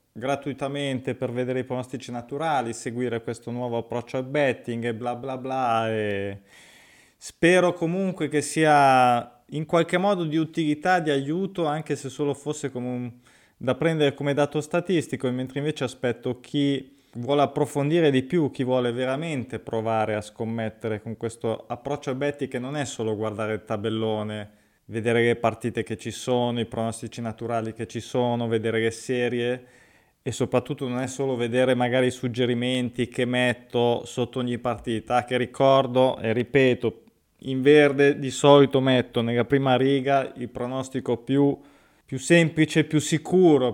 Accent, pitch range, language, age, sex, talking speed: native, 120-140 Hz, Italian, 20-39, male, 155 wpm